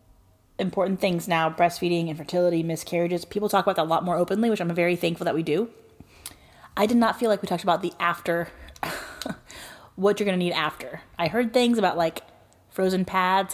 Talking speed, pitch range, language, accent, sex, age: 195 wpm, 165-205 Hz, English, American, female, 20-39